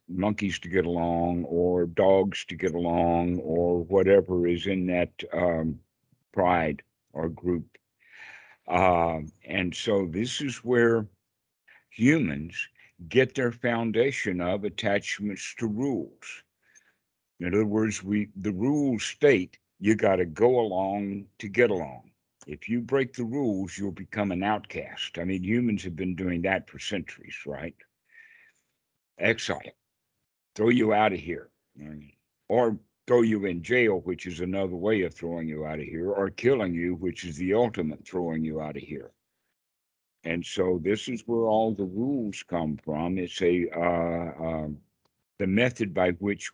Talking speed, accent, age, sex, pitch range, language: 150 wpm, American, 60-79, male, 85-110 Hz, English